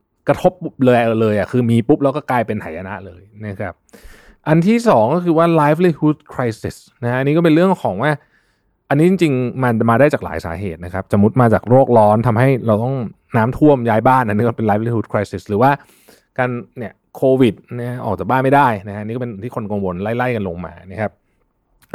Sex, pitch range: male, 105-145 Hz